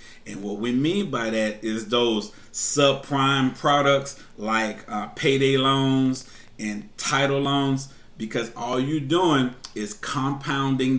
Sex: male